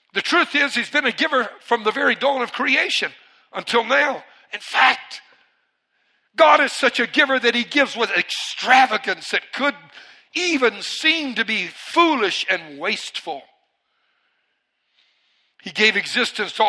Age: 60-79